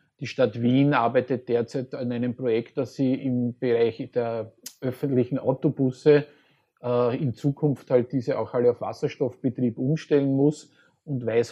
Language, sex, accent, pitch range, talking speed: German, male, Austrian, 120-135 Hz, 145 wpm